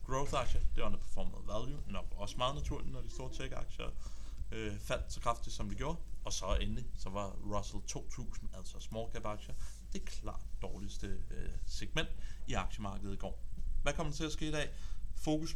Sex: male